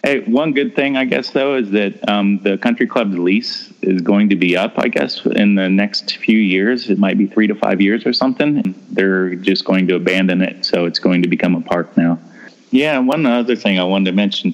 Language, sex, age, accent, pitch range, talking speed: English, male, 30-49, American, 95-120 Hz, 235 wpm